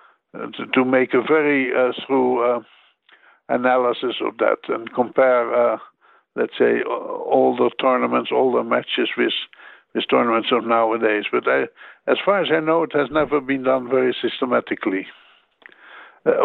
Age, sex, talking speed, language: 60-79, male, 155 wpm, English